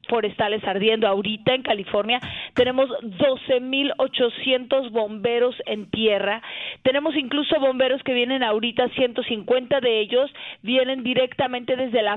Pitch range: 220-270 Hz